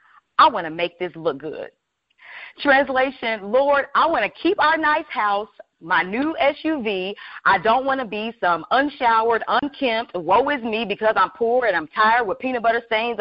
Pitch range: 195-275 Hz